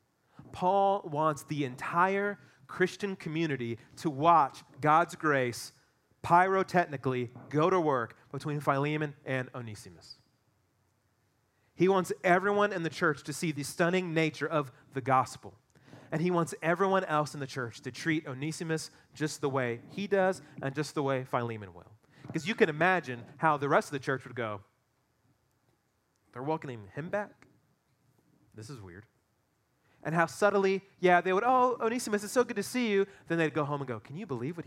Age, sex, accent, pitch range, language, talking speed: 30-49, male, American, 125-170 Hz, English, 170 wpm